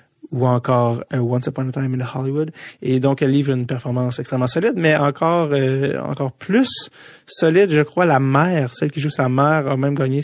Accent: Canadian